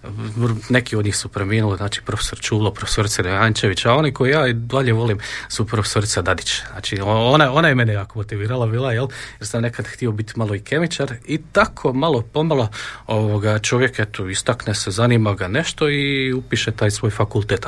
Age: 40-59